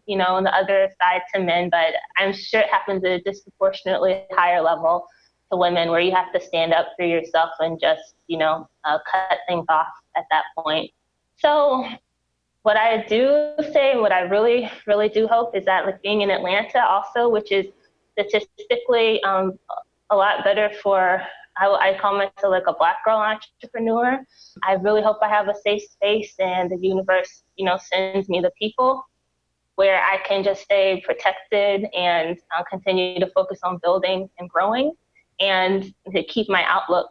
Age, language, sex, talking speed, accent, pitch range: 20-39, English, female, 180 wpm, American, 180-215 Hz